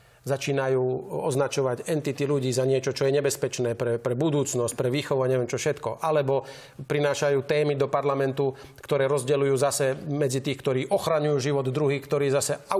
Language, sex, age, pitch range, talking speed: Slovak, male, 40-59, 130-150 Hz, 160 wpm